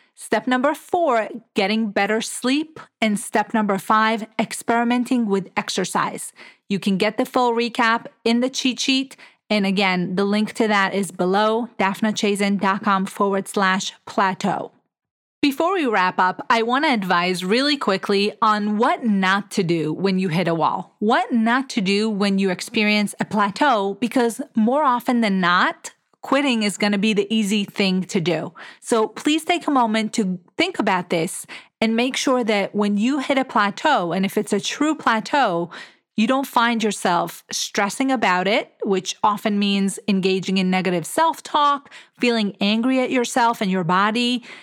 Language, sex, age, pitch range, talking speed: English, female, 30-49, 200-250 Hz, 165 wpm